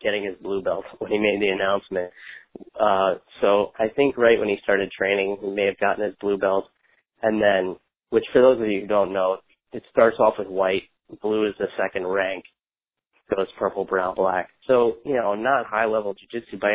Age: 30-49